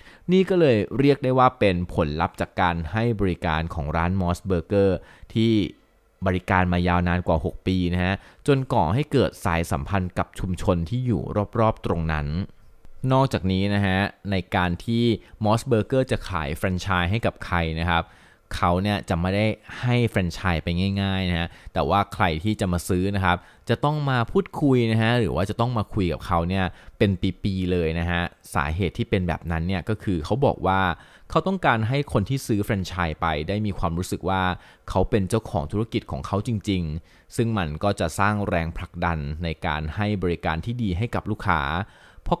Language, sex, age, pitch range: Thai, male, 20-39, 85-110 Hz